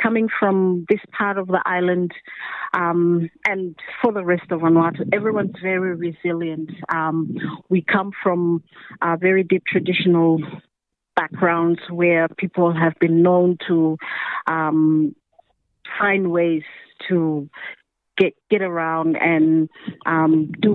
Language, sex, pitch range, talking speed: English, female, 170-195 Hz, 120 wpm